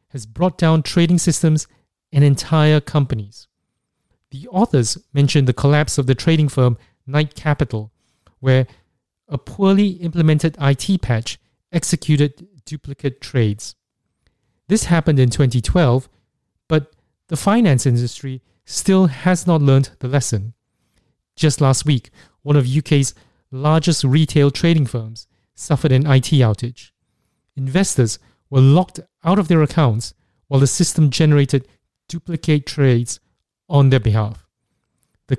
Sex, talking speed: male, 125 wpm